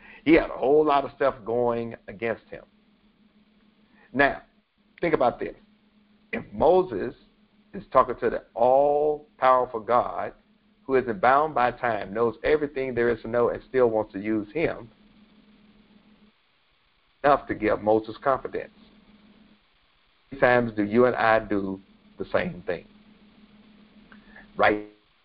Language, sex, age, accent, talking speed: English, male, 50-69, American, 135 wpm